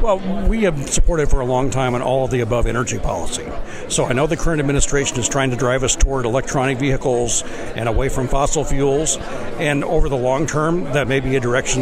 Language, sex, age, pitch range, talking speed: English, male, 60-79, 130-155 Hz, 225 wpm